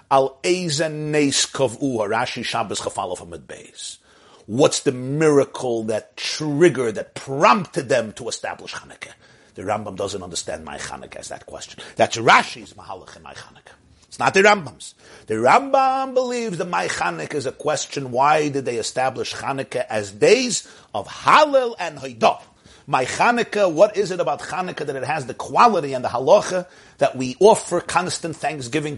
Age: 50-69